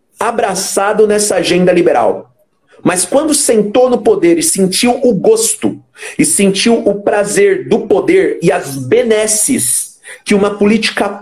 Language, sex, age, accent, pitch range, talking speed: Portuguese, male, 50-69, Brazilian, 185-235 Hz, 135 wpm